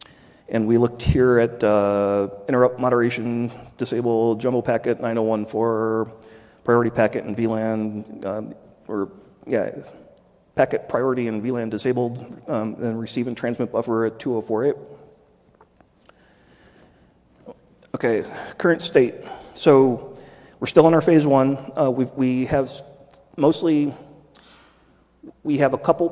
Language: English